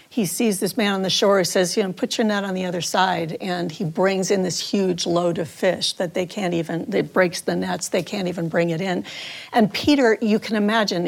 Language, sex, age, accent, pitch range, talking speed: English, female, 50-69, American, 185-255 Hz, 250 wpm